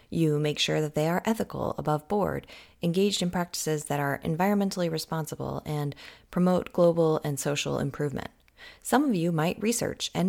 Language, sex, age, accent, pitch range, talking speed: English, female, 30-49, American, 145-200 Hz, 165 wpm